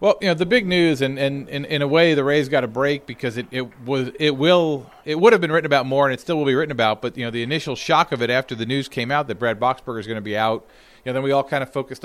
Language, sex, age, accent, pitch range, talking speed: English, male, 40-59, American, 125-150 Hz, 330 wpm